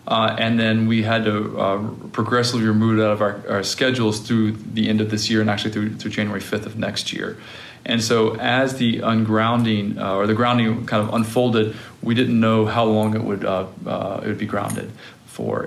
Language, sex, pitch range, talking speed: English, male, 105-120 Hz, 215 wpm